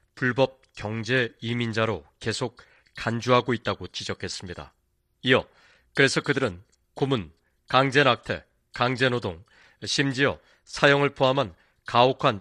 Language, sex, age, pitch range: Korean, male, 40-59, 115-140 Hz